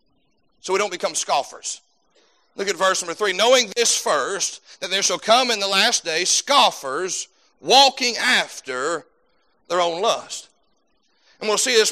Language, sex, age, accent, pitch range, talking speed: English, male, 40-59, American, 195-245 Hz, 155 wpm